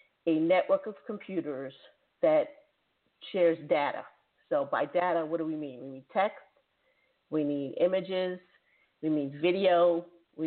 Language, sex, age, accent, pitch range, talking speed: English, female, 40-59, American, 160-205 Hz, 140 wpm